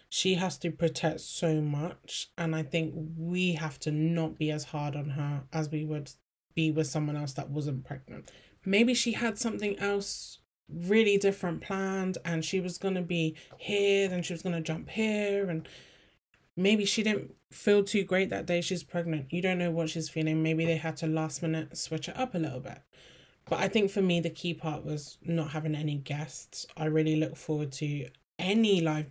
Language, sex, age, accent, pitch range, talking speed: English, male, 10-29, British, 155-180 Hz, 205 wpm